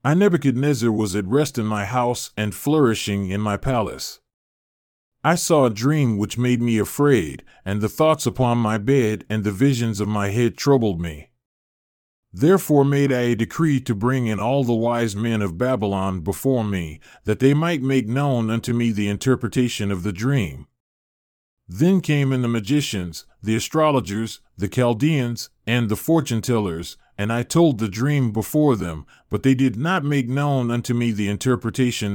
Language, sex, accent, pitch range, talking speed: English, male, American, 105-135 Hz, 170 wpm